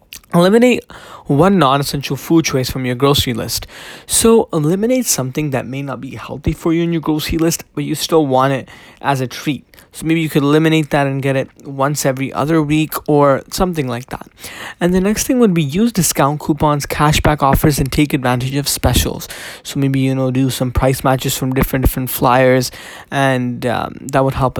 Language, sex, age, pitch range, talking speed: English, male, 20-39, 130-160 Hz, 200 wpm